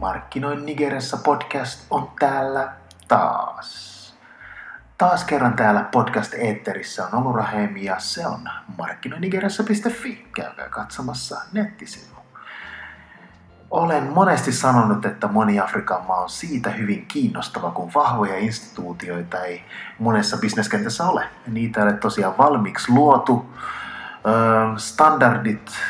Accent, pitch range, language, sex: native, 105-130 Hz, Finnish, male